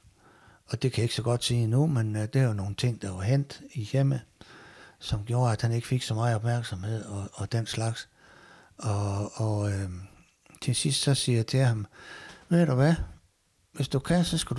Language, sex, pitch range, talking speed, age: Danish, male, 110-140 Hz, 210 wpm, 60-79